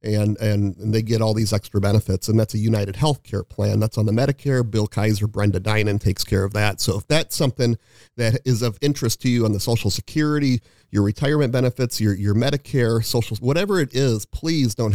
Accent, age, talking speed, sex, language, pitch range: American, 40-59, 210 wpm, male, English, 105-130 Hz